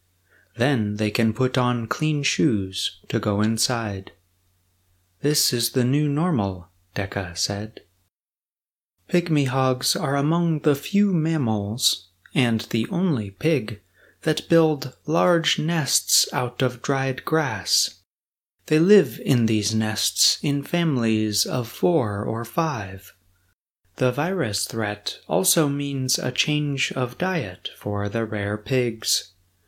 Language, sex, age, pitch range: Chinese, male, 30-49, 105-140 Hz